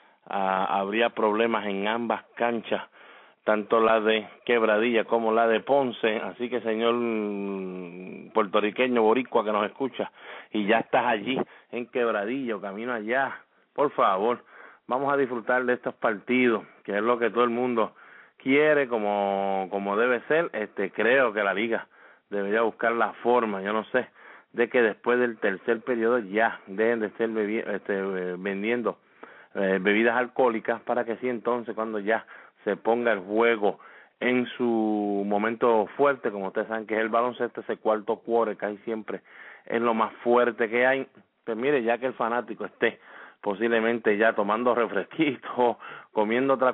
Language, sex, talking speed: English, male, 155 wpm